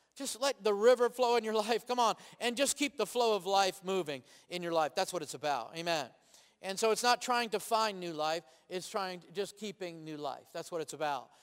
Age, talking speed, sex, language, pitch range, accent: 40-59, 240 wpm, male, English, 180-225 Hz, American